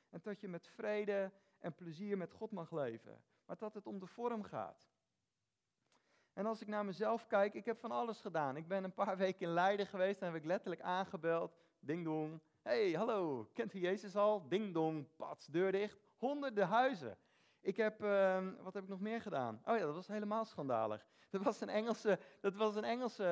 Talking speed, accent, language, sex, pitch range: 200 wpm, Dutch, Dutch, male, 180-230 Hz